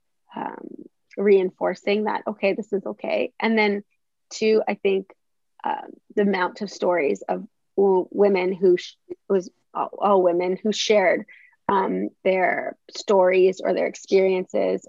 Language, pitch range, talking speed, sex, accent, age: English, 190-225 Hz, 130 wpm, female, American, 30-49